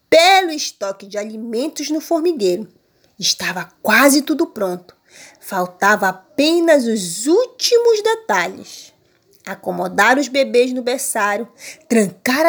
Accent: Brazilian